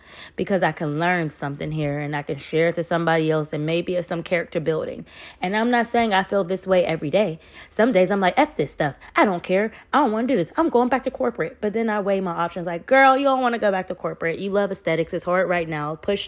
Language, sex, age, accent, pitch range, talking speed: English, female, 30-49, American, 160-195 Hz, 275 wpm